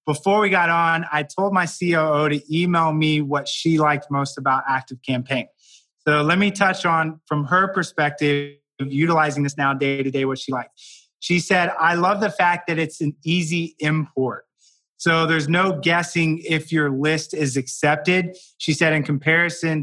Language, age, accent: English, 30-49, American